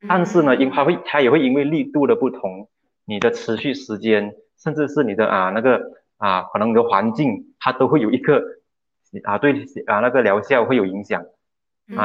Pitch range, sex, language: 105-140 Hz, male, Chinese